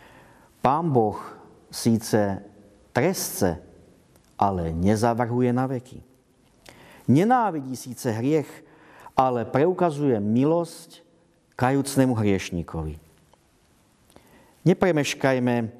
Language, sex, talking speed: Slovak, male, 65 wpm